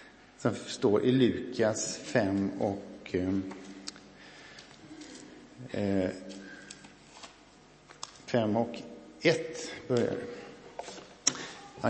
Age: 50-69